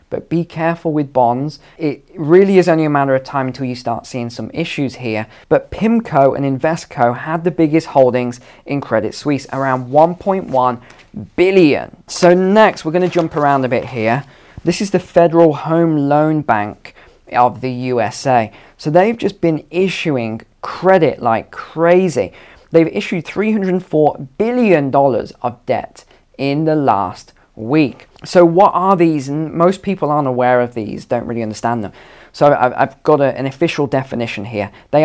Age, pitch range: 20-39, 125-170 Hz